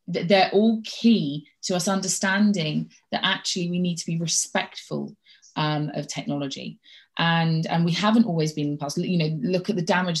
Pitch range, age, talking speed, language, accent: 155-200 Hz, 20-39, 165 wpm, English, British